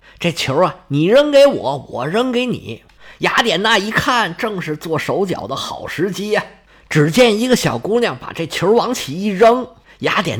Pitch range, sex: 190-275 Hz, male